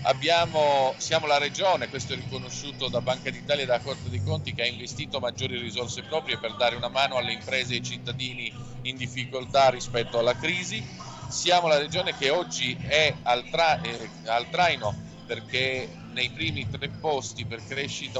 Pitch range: 115-140 Hz